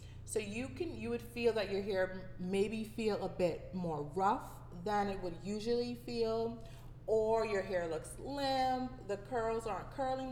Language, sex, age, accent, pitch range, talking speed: English, female, 30-49, American, 155-225 Hz, 170 wpm